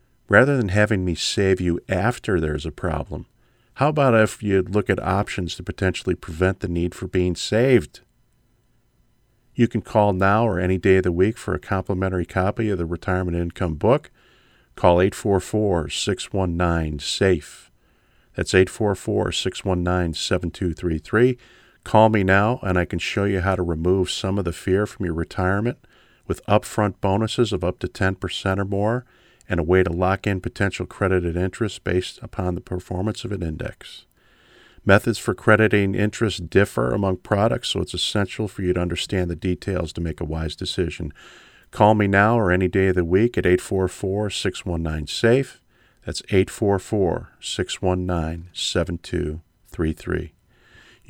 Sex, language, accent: male, English, American